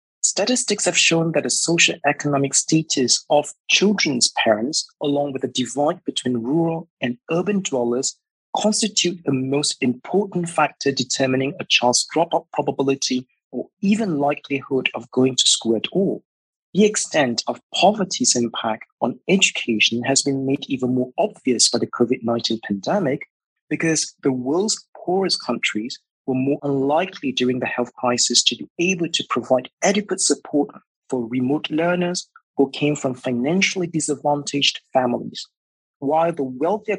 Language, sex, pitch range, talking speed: English, male, 130-170 Hz, 140 wpm